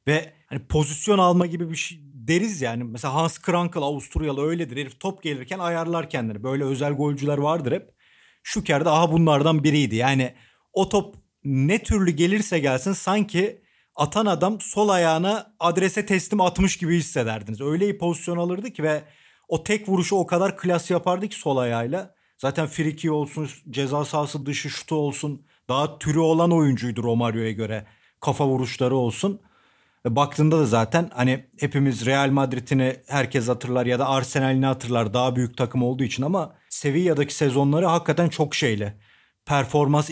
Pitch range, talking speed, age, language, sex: 130-170 Hz, 155 wpm, 40-59, Turkish, male